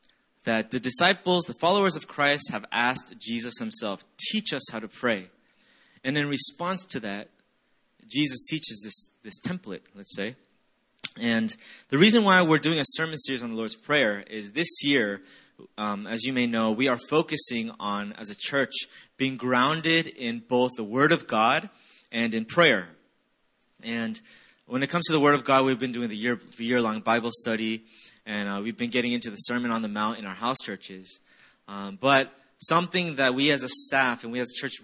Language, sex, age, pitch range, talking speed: English, male, 20-39, 115-145 Hz, 195 wpm